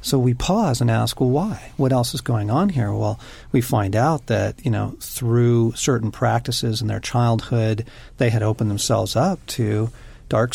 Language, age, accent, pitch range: English, 40-59, American, 110-135 Hz